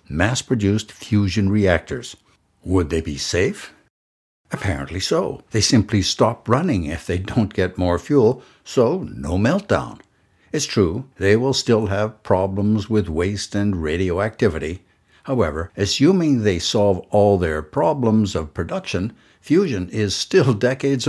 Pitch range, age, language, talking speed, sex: 85-110 Hz, 60-79, English, 130 wpm, male